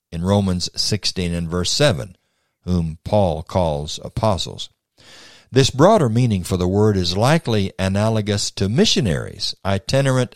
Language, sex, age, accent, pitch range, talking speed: English, male, 60-79, American, 90-115 Hz, 125 wpm